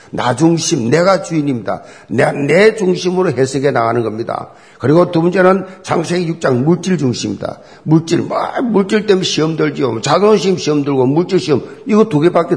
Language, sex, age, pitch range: Korean, male, 50-69, 135-200 Hz